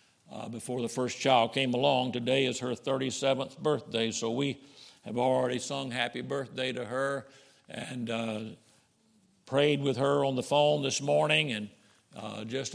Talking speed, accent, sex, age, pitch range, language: 160 wpm, American, male, 50-69, 120-145 Hz, English